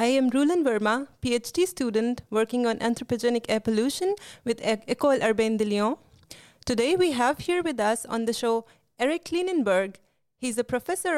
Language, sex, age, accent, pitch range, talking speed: French, female, 30-49, Indian, 230-285 Hz, 160 wpm